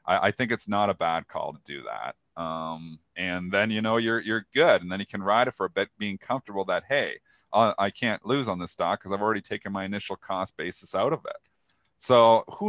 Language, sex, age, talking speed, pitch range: English, male, 40-59, 240 wpm, 95-125 Hz